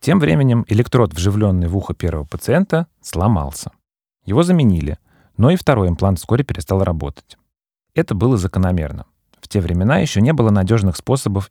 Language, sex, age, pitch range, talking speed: Russian, male, 30-49, 90-120 Hz, 150 wpm